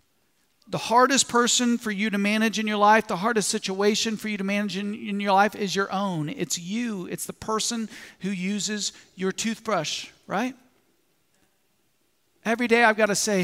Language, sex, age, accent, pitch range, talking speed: English, male, 40-59, American, 165-195 Hz, 180 wpm